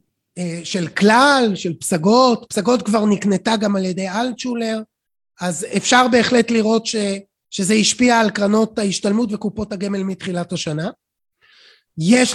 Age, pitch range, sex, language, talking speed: 30-49, 205-250 Hz, male, Hebrew, 125 wpm